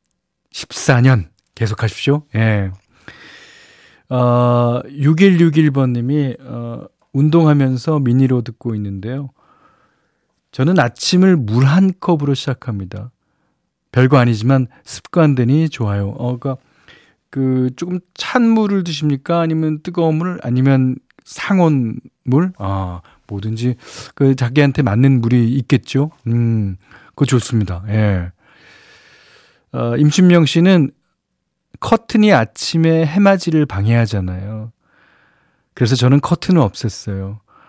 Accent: native